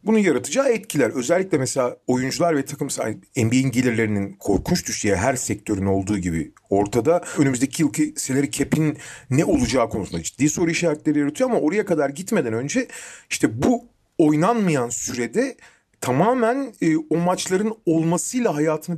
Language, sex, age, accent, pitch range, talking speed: Turkish, male, 40-59, native, 130-175 Hz, 135 wpm